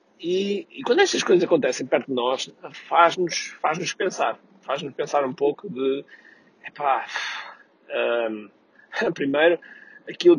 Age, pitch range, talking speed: 20-39, 125-170 Hz, 120 wpm